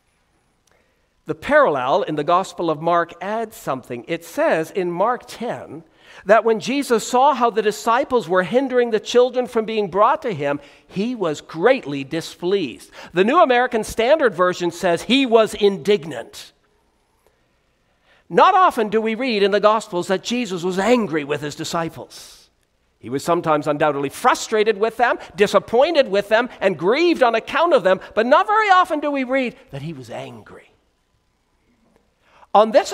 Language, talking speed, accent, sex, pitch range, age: English, 160 wpm, American, male, 180-275 Hz, 50-69